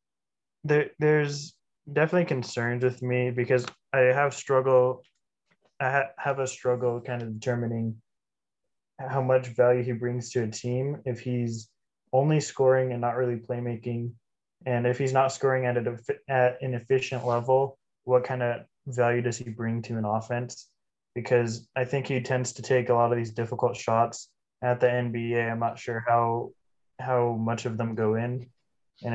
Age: 20-39